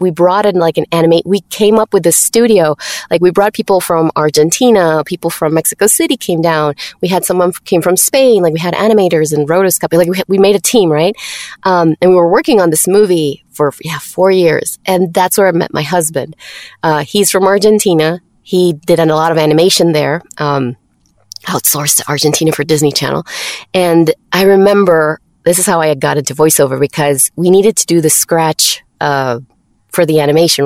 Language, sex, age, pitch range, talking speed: English, female, 20-39, 155-200 Hz, 200 wpm